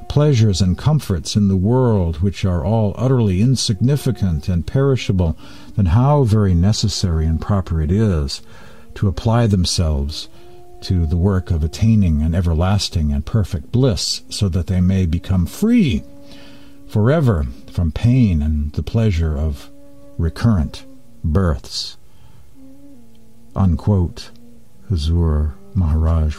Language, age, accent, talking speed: English, 60-79, American, 120 wpm